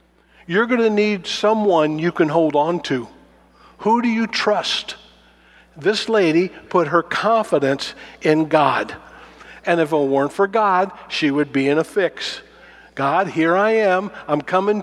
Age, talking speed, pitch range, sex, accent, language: 50-69, 160 wpm, 150-195 Hz, male, American, English